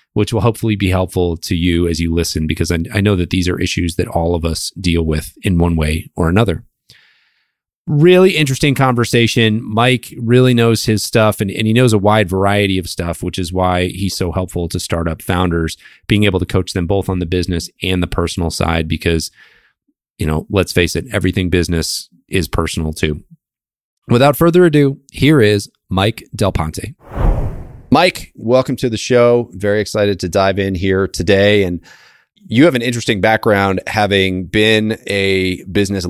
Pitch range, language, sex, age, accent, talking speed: 85-110 Hz, English, male, 30-49, American, 180 wpm